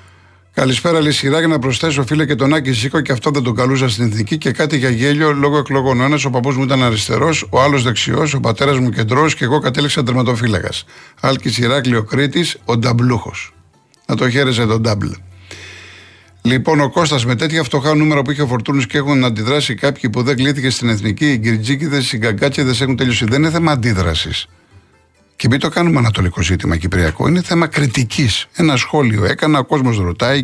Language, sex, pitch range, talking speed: Greek, male, 115-145 Hz, 185 wpm